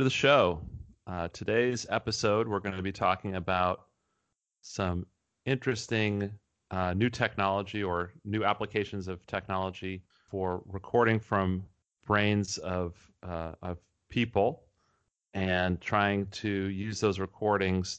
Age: 30-49